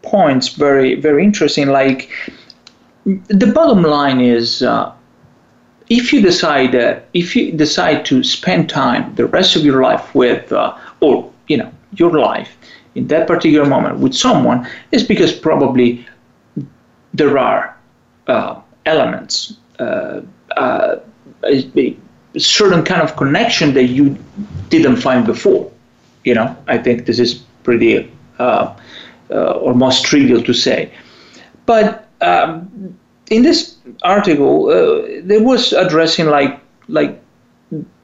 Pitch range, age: 140-215 Hz, 40-59